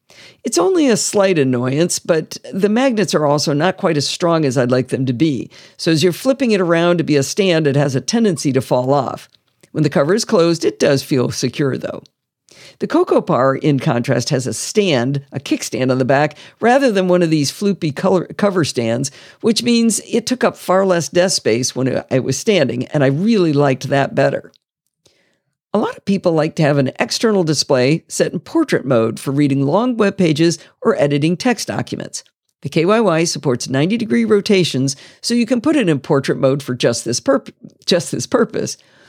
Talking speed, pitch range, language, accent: 200 wpm, 140-210 Hz, English, American